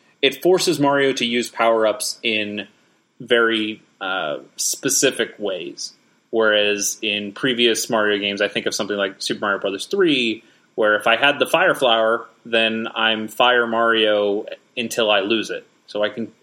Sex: male